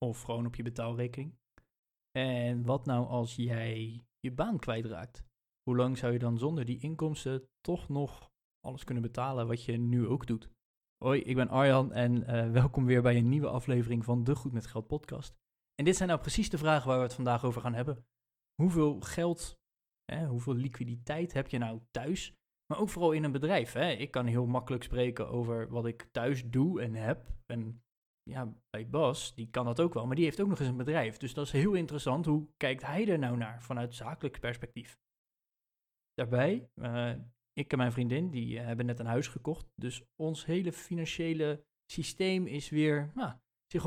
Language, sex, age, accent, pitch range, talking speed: Dutch, male, 20-39, Dutch, 120-150 Hz, 195 wpm